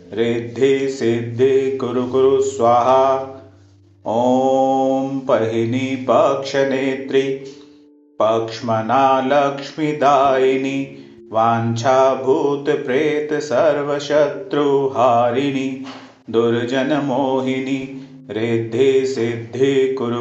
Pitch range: 120-135 Hz